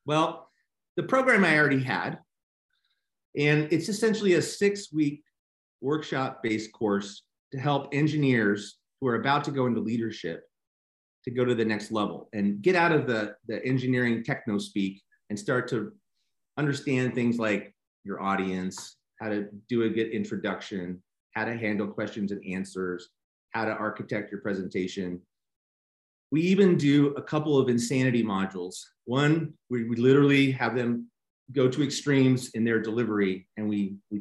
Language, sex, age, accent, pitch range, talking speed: English, male, 30-49, American, 105-145 Hz, 155 wpm